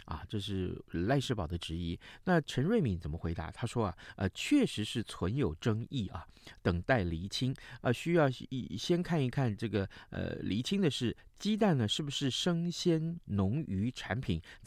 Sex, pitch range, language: male, 95-140 Hz, Chinese